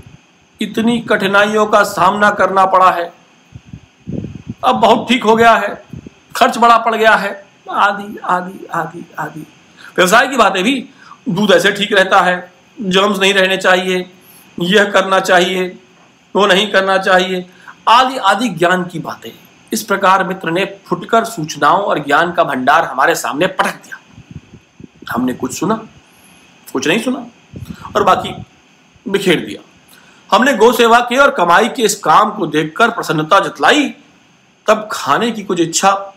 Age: 50-69